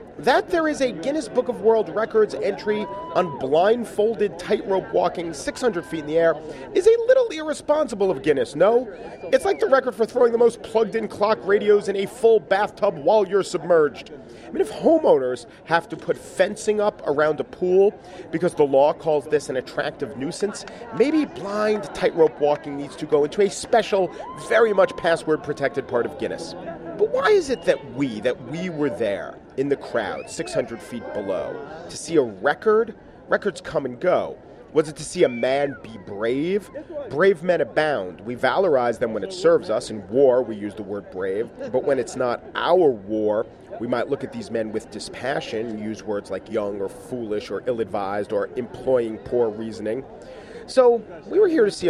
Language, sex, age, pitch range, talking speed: English, male, 40-59, 150-230 Hz, 185 wpm